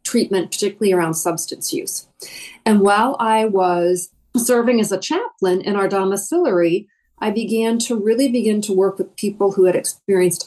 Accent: American